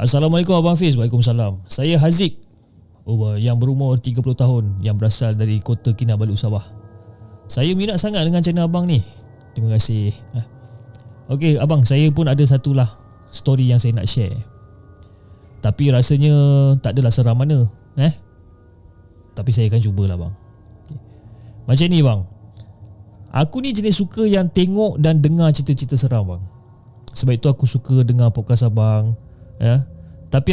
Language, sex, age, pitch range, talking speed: Malay, male, 20-39, 110-145 Hz, 145 wpm